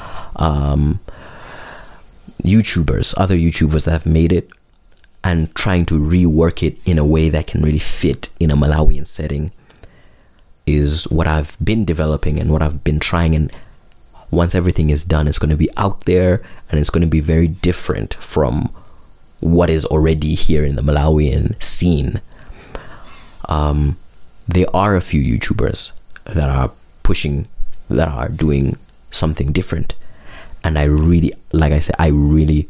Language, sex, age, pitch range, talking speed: English, male, 30-49, 75-90 Hz, 150 wpm